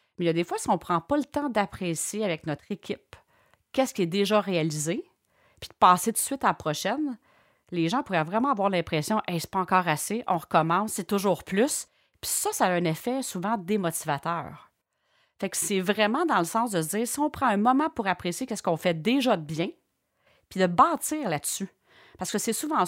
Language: French